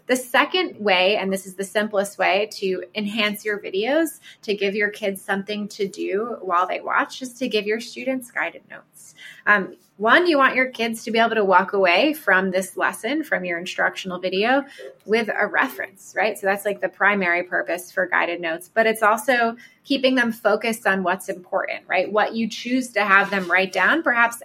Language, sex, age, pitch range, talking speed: English, female, 20-39, 190-230 Hz, 200 wpm